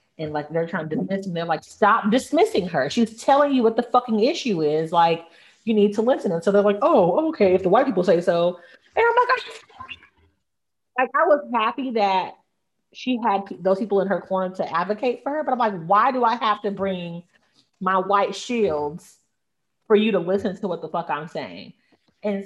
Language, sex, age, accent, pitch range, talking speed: English, female, 30-49, American, 170-225 Hz, 210 wpm